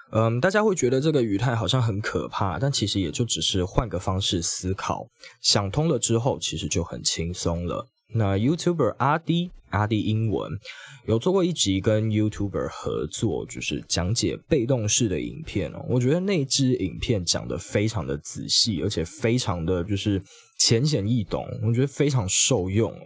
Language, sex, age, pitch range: Chinese, male, 20-39, 95-130 Hz